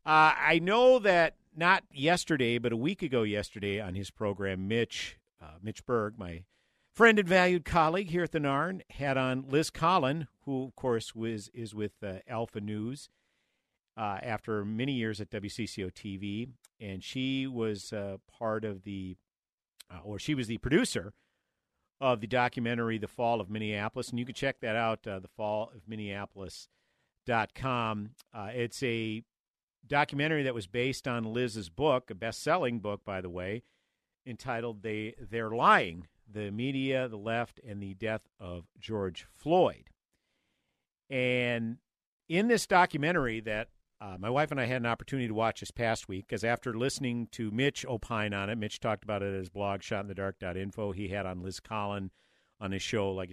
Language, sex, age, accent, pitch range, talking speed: English, male, 50-69, American, 100-130 Hz, 170 wpm